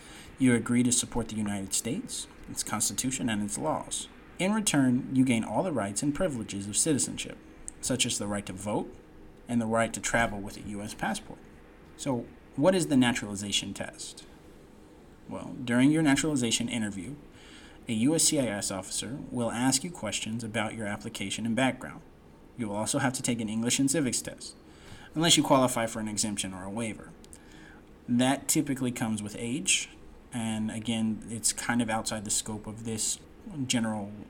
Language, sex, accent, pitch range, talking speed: English, male, American, 105-125 Hz, 170 wpm